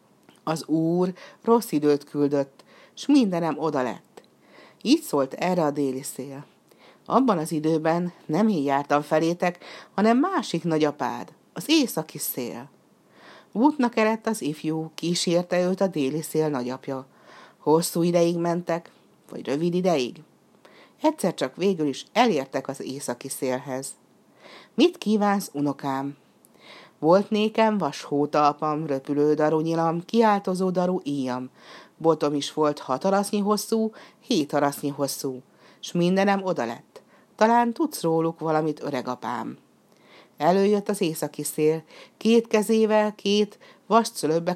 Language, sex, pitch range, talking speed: Hungarian, female, 145-200 Hz, 125 wpm